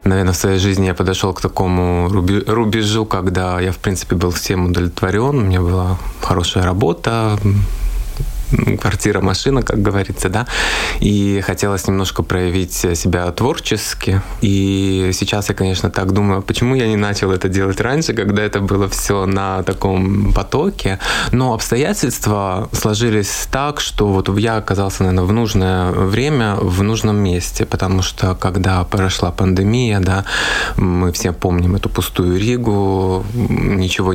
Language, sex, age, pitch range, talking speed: Russian, male, 20-39, 95-110 Hz, 140 wpm